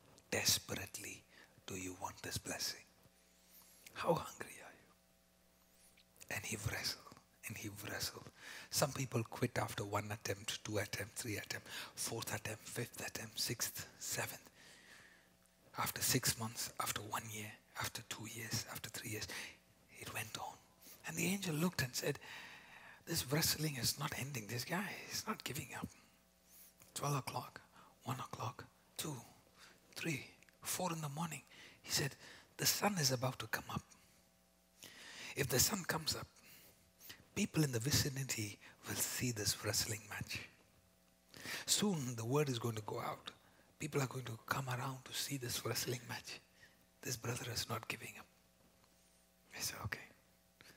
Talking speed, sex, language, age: 150 wpm, male, English, 60-79